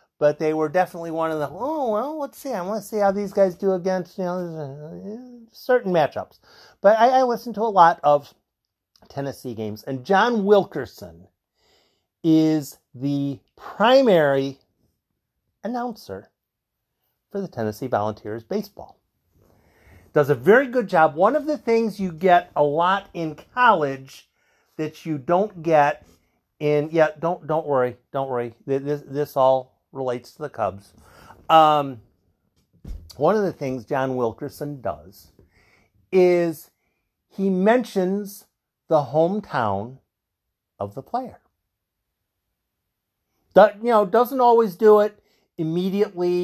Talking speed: 130 wpm